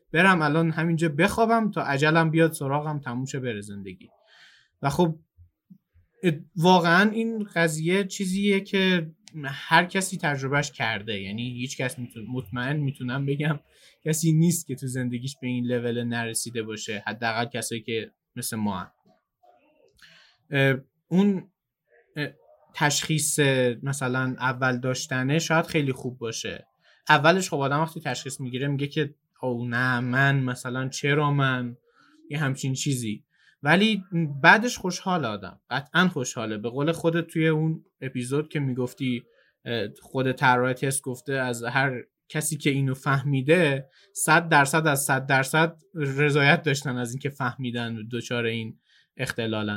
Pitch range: 125-165 Hz